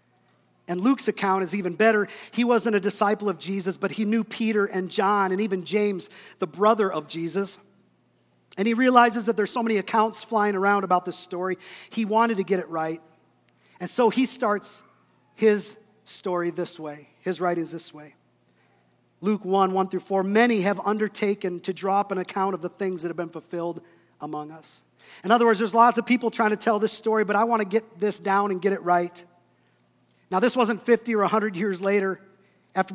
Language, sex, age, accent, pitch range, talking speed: English, male, 40-59, American, 180-220 Hz, 200 wpm